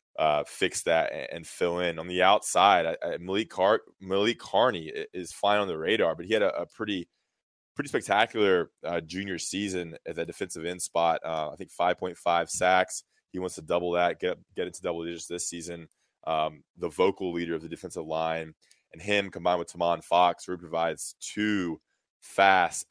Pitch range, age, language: 80-90 Hz, 20-39, English